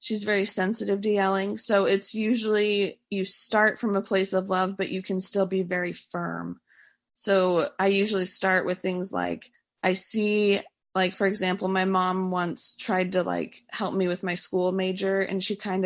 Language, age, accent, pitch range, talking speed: English, 20-39, American, 185-210 Hz, 185 wpm